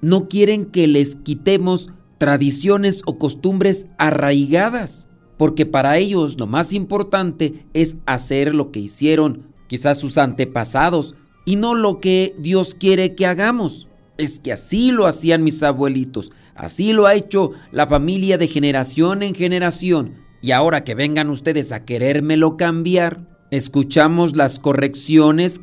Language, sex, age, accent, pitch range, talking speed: Spanish, male, 40-59, Mexican, 140-180 Hz, 140 wpm